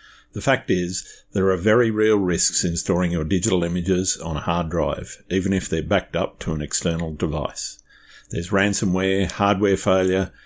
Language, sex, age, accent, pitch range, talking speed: English, male, 50-69, Australian, 85-100 Hz, 170 wpm